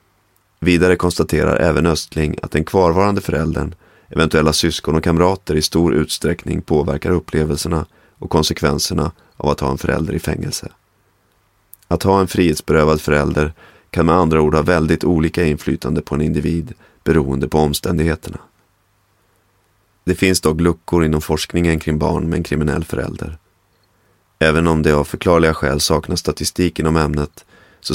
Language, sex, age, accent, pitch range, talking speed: Swedish, male, 30-49, native, 75-90 Hz, 145 wpm